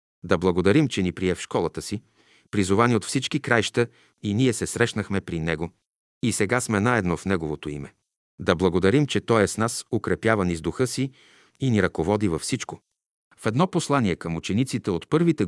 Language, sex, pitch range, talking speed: Bulgarian, male, 90-115 Hz, 180 wpm